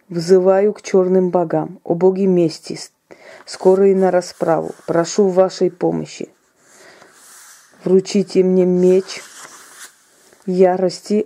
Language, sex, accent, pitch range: Russian, female, native, 180-195 Hz